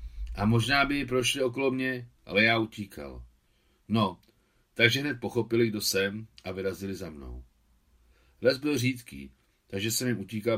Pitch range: 80-115 Hz